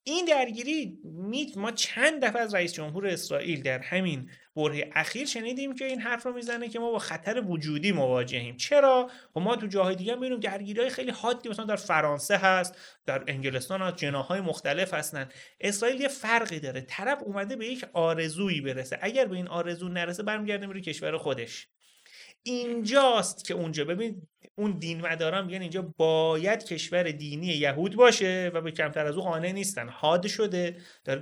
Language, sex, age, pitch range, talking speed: Persian, male, 30-49, 165-235 Hz, 165 wpm